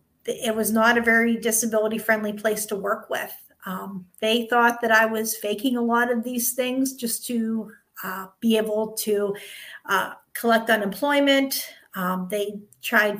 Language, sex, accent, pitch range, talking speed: English, female, American, 215-255 Hz, 155 wpm